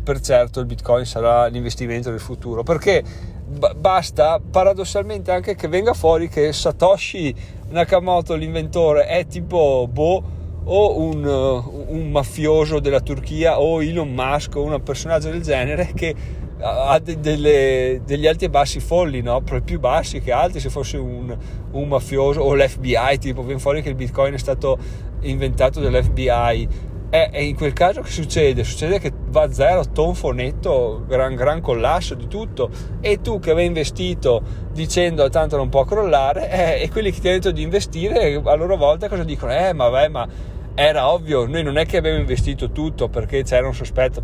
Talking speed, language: 175 wpm, Italian